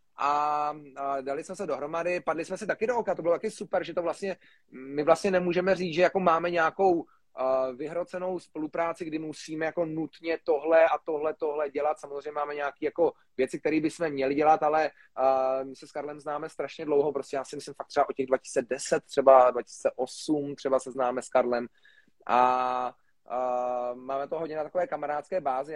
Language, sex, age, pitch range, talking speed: Slovak, male, 30-49, 135-155 Hz, 185 wpm